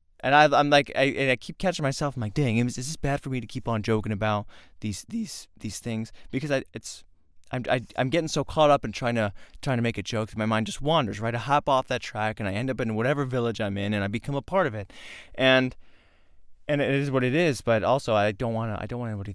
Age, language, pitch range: 20-39, English, 105-150 Hz